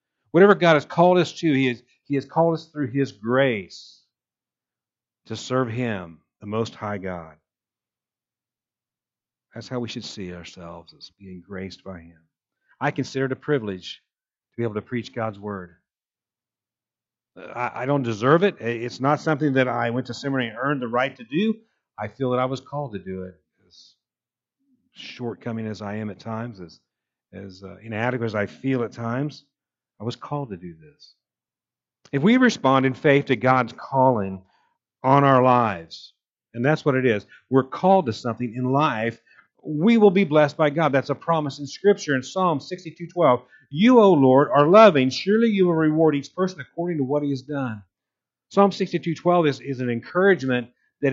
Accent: American